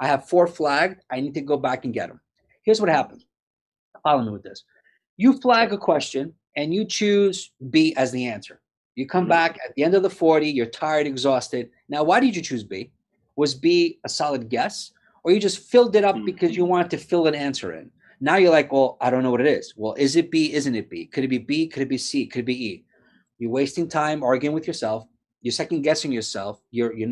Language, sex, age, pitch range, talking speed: English, male, 30-49, 130-185 Hz, 240 wpm